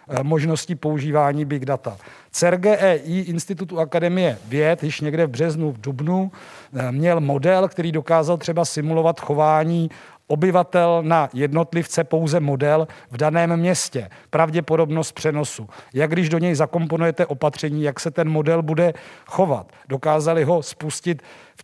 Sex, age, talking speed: male, 50-69, 130 wpm